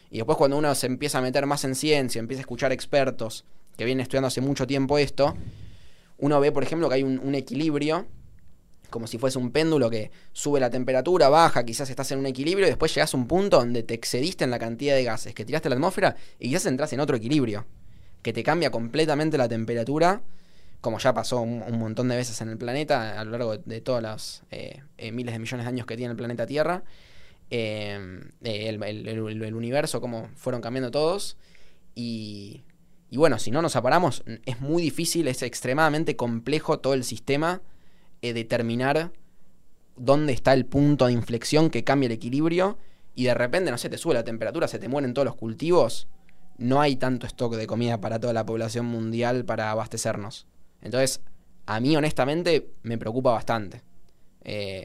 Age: 20-39